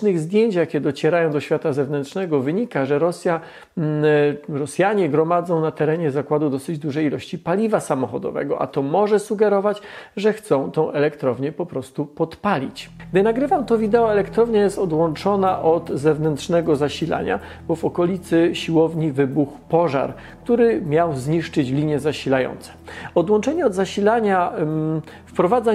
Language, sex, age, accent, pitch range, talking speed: Polish, male, 40-59, native, 150-200 Hz, 135 wpm